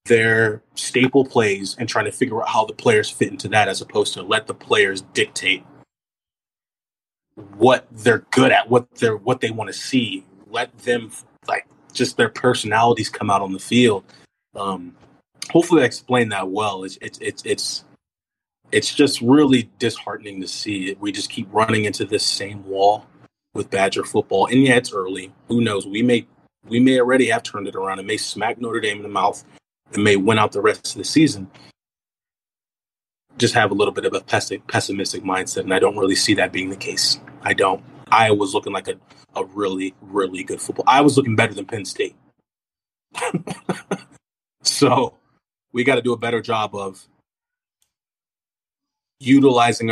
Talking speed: 180 wpm